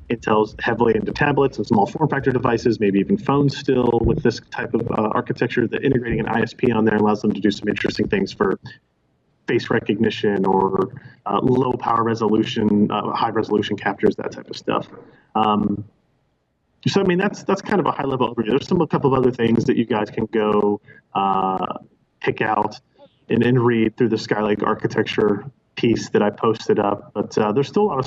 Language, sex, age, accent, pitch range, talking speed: English, male, 30-49, American, 105-130 Hz, 200 wpm